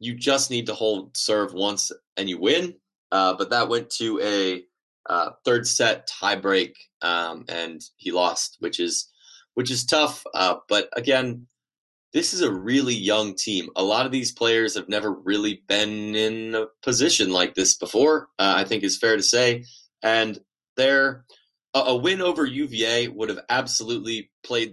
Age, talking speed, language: 20-39, 170 wpm, English